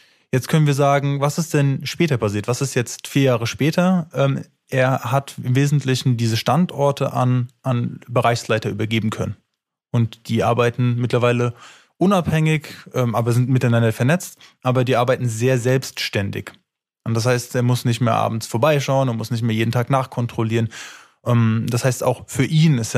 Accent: German